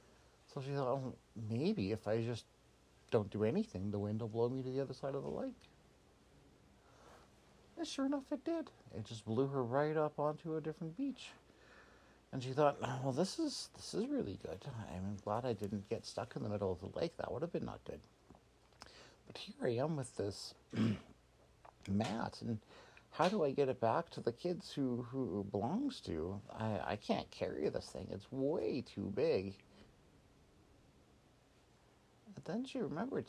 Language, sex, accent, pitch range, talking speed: English, male, American, 105-150 Hz, 180 wpm